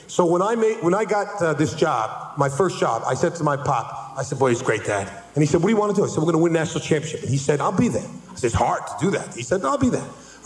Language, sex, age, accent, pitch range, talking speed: English, male, 40-59, American, 185-250 Hz, 350 wpm